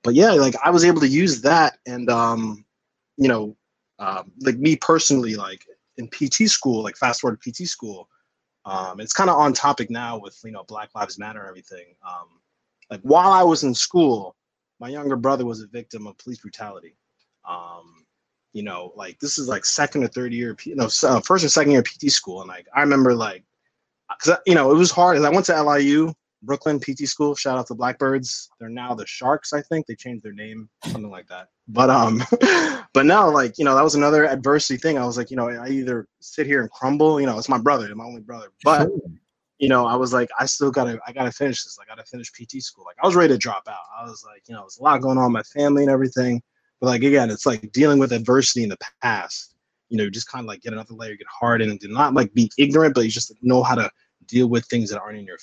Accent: American